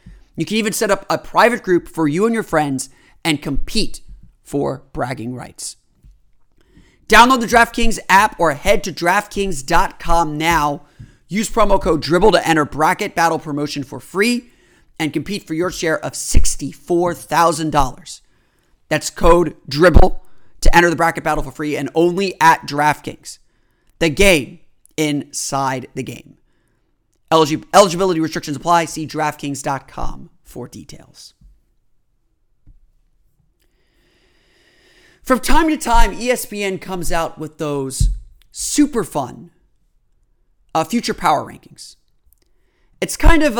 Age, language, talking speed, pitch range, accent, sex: 30-49, English, 125 wpm, 145-200 Hz, American, male